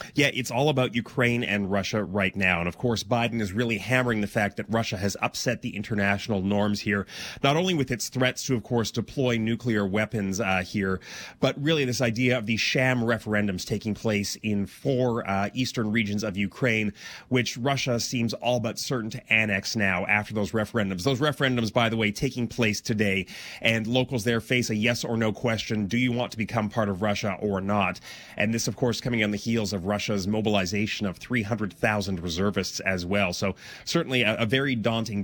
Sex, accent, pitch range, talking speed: male, American, 105-125 Hz, 200 wpm